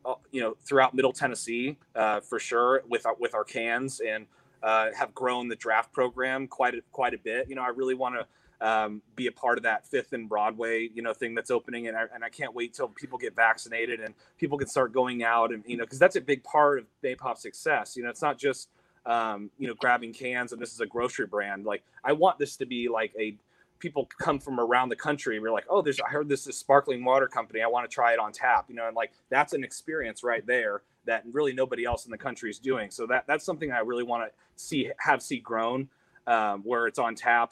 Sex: male